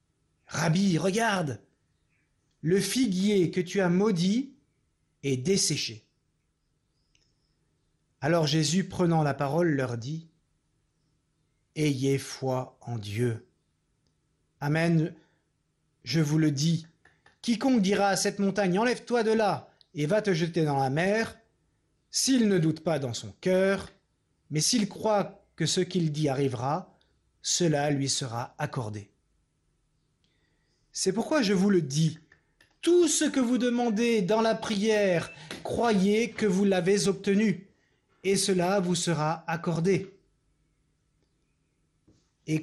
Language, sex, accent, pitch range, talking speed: French, male, French, 150-200 Hz, 120 wpm